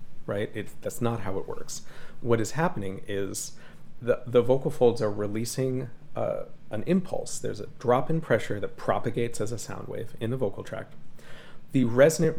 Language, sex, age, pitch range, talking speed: English, male, 30-49, 105-135 Hz, 175 wpm